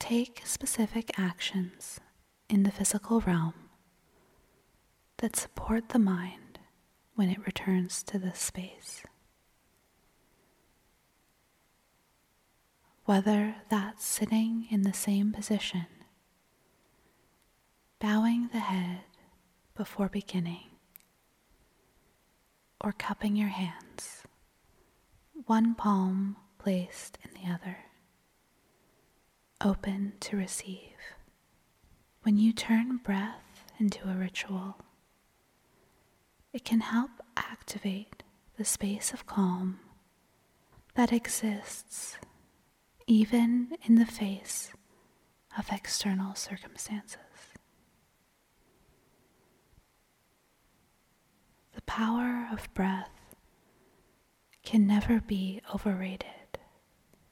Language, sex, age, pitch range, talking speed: English, female, 30-49, 190-225 Hz, 75 wpm